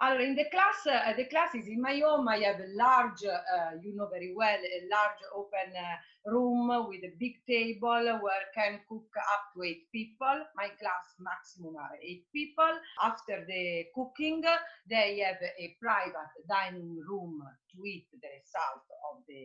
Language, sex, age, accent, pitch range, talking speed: English, female, 40-59, Italian, 180-240 Hz, 165 wpm